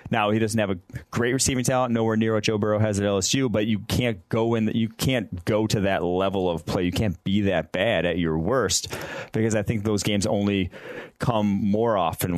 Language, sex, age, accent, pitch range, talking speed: English, male, 30-49, American, 90-110 Hz, 230 wpm